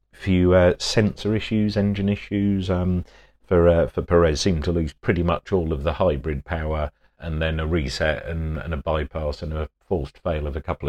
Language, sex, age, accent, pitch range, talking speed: English, male, 40-59, British, 75-85 Hz, 200 wpm